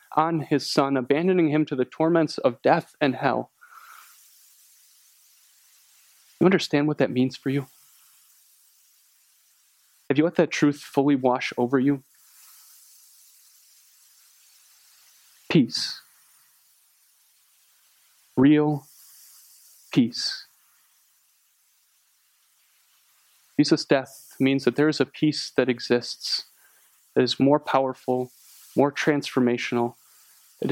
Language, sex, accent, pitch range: English, male, American, 125-150 Hz